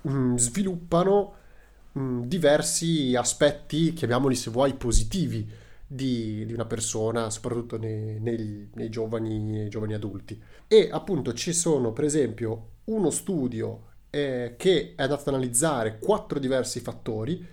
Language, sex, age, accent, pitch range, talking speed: Italian, male, 30-49, native, 115-145 Hz, 125 wpm